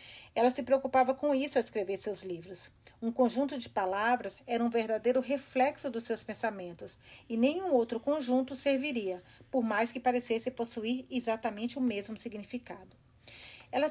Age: 40-59